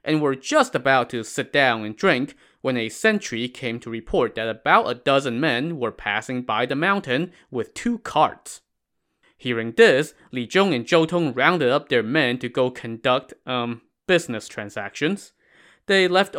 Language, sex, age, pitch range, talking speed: English, male, 20-39, 115-170 Hz, 170 wpm